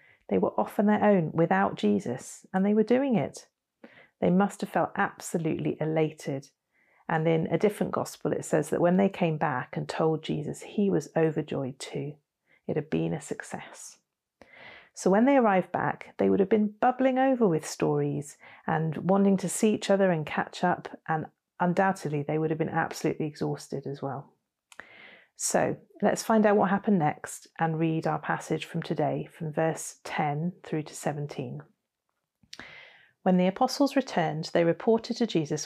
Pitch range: 150-195 Hz